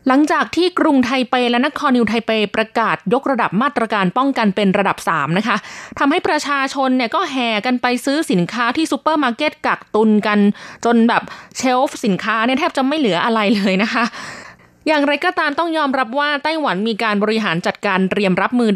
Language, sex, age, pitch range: Thai, female, 20-39, 200-255 Hz